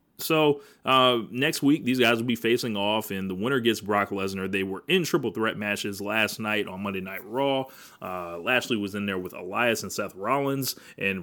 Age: 30-49